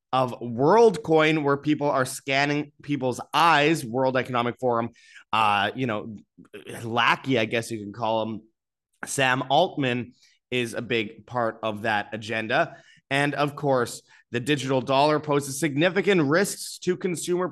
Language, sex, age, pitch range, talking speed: English, male, 20-39, 120-160 Hz, 140 wpm